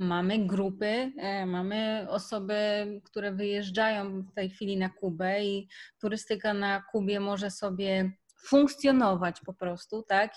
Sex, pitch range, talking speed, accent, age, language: female, 195-225 Hz, 120 wpm, native, 20-39, Polish